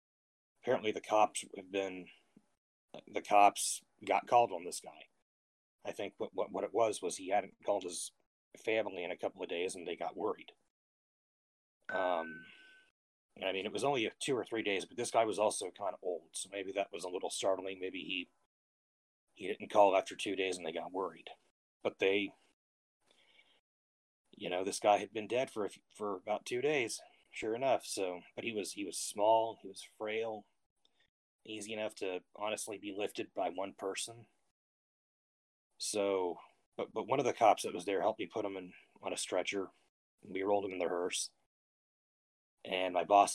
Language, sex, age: English, male, 30-49